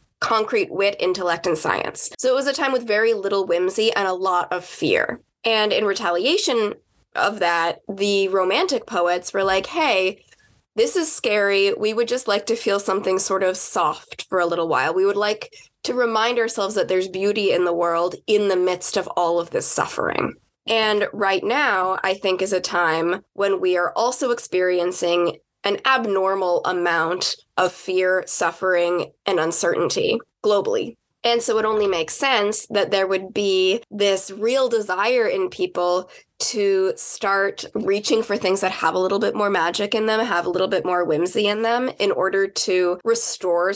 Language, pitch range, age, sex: English, 185-230 Hz, 20-39, female